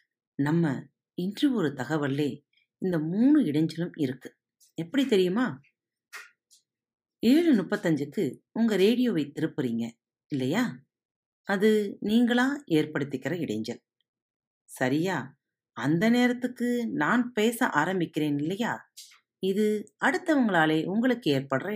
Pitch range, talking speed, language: 135-215 Hz, 85 wpm, Tamil